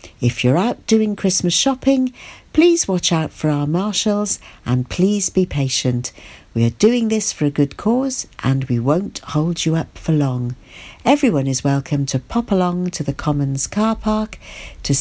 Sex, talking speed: female, 175 wpm